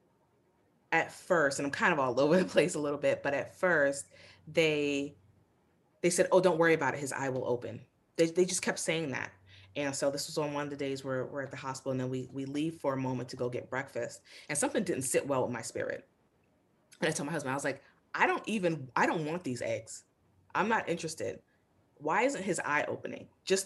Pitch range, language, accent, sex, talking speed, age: 125-155 Hz, English, American, female, 235 wpm, 20-39